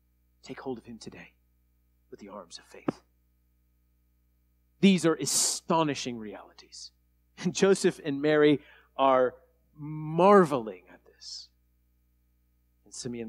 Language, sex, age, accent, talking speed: English, male, 40-59, American, 110 wpm